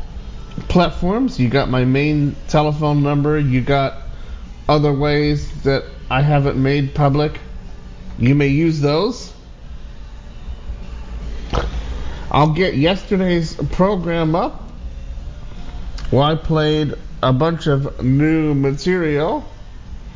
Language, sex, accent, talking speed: English, male, American, 100 wpm